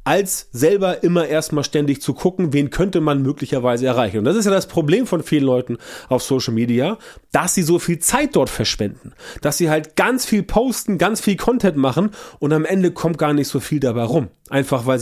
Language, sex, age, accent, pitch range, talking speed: German, male, 30-49, German, 125-165 Hz, 210 wpm